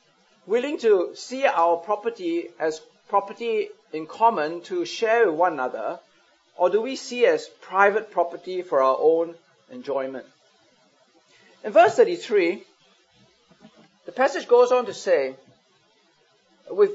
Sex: male